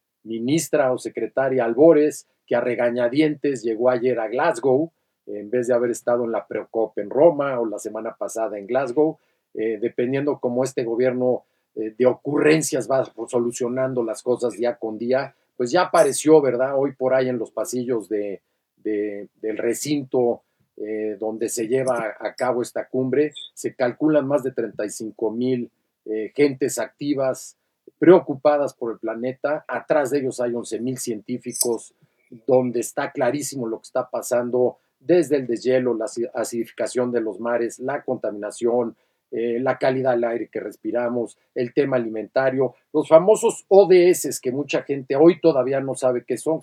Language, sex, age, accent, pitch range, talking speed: Spanish, male, 50-69, Mexican, 115-140 Hz, 155 wpm